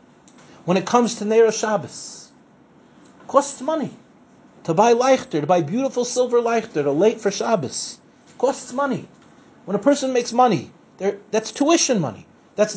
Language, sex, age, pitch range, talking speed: English, male, 40-59, 205-275 Hz, 155 wpm